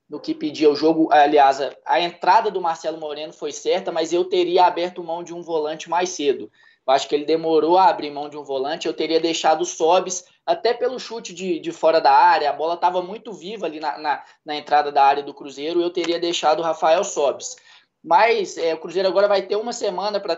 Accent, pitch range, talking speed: Brazilian, 155-220 Hz, 225 wpm